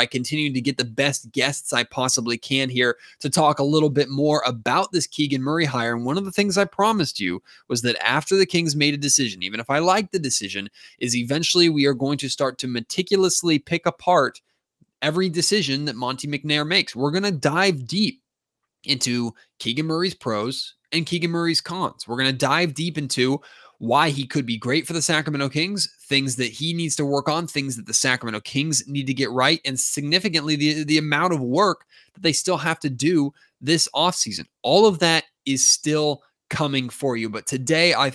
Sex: male